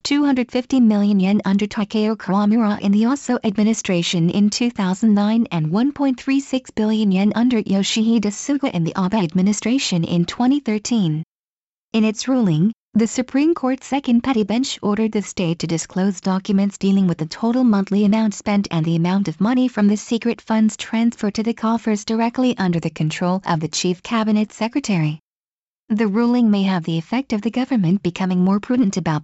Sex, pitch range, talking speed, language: female, 185-235 Hz, 165 wpm, English